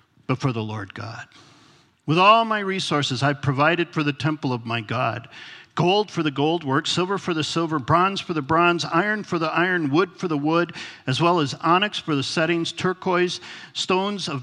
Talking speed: 195 wpm